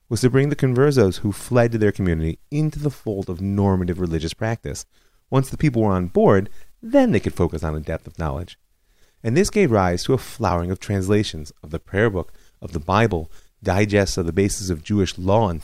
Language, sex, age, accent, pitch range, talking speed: English, male, 30-49, American, 85-115 Hz, 215 wpm